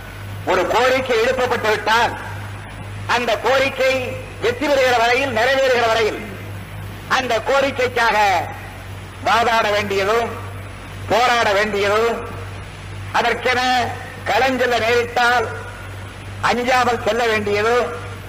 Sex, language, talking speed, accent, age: female, Tamil, 70 wpm, native, 50-69